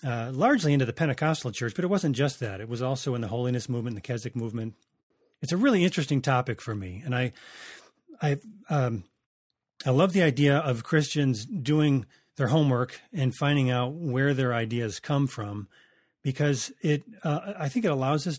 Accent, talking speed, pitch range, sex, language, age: American, 185 wpm, 125-155 Hz, male, English, 30-49